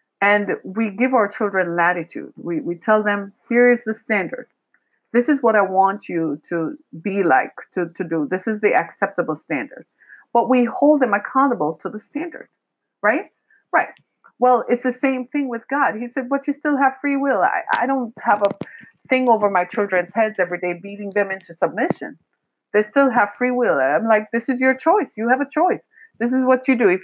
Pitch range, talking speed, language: 190-255 Hz, 205 wpm, English